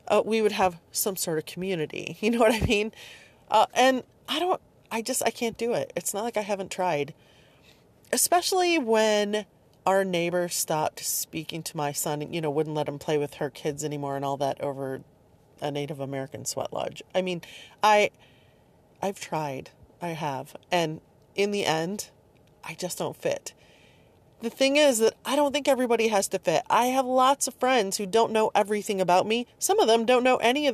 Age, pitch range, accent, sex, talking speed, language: 30-49, 155-225 Hz, American, female, 200 wpm, English